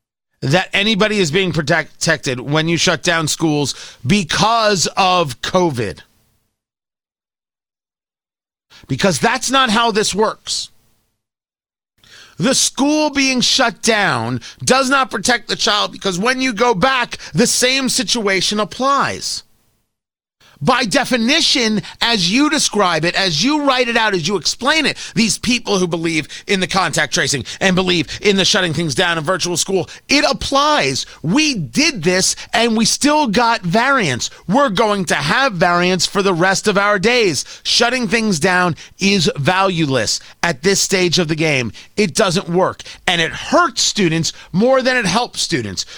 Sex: male